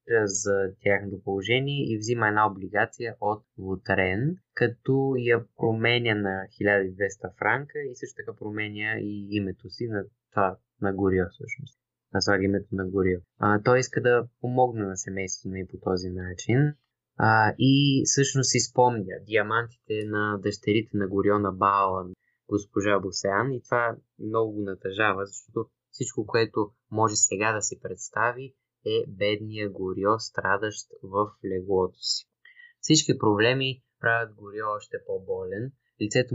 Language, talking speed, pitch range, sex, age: Bulgarian, 140 wpm, 100-125 Hz, male, 20-39